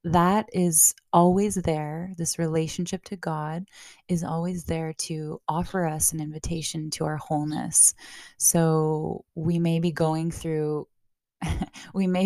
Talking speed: 130 wpm